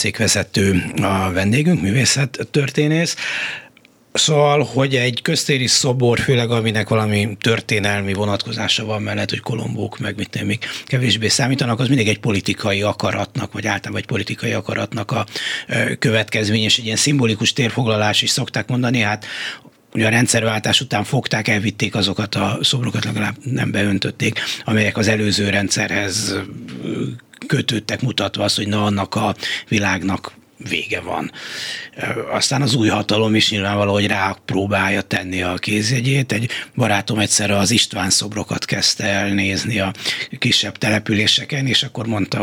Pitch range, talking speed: 100-125 Hz, 135 wpm